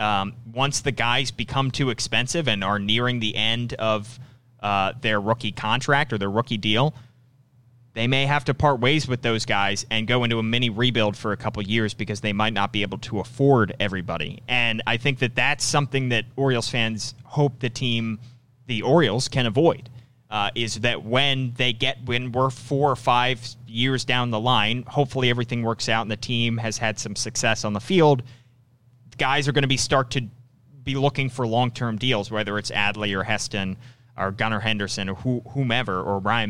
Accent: American